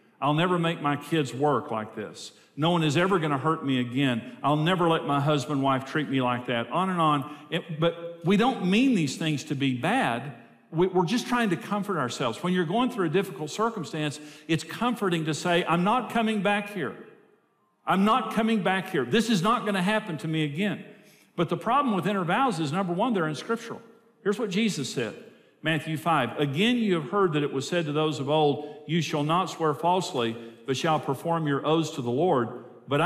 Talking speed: 220 wpm